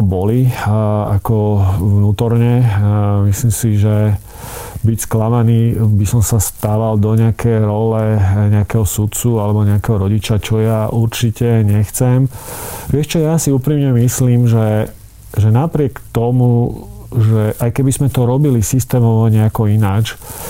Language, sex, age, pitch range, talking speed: Slovak, male, 40-59, 105-120 Hz, 125 wpm